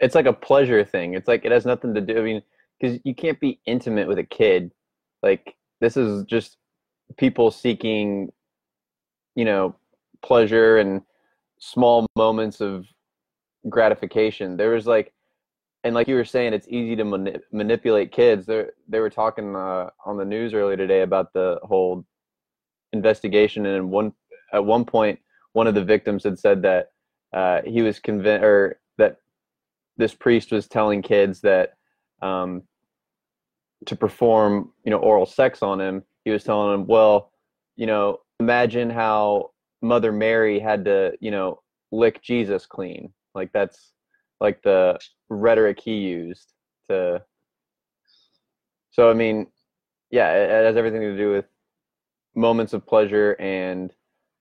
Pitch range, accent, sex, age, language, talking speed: 100-115 Hz, American, male, 20-39, English, 150 wpm